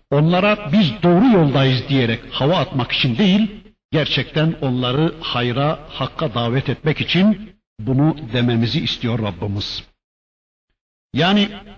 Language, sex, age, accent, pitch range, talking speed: Turkish, male, 60-79, native, 125-175 Hz, 105 wpm